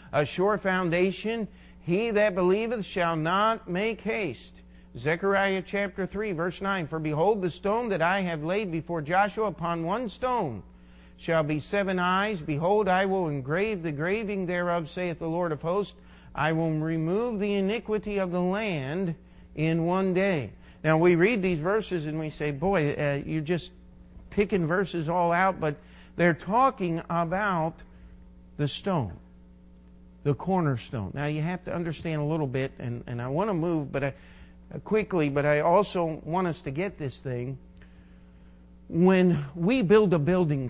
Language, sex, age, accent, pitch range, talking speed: English, male, 50-69, American, 135-185 Hz, 160 wpm